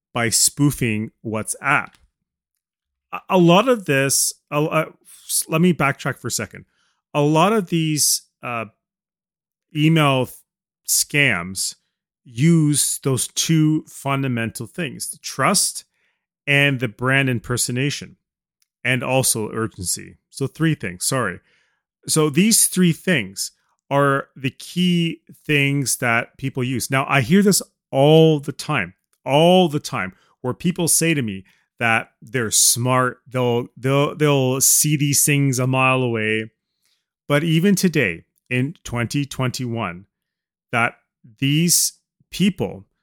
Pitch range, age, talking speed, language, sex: 125-160 Hz, 30-49, 120 wpm, English, male